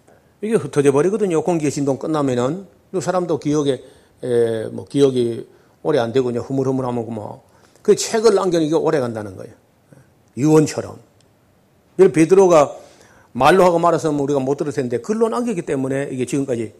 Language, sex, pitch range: Korean, male, 125-180 Hz